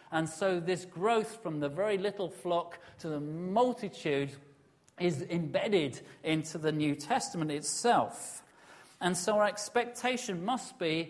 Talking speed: 135 wpm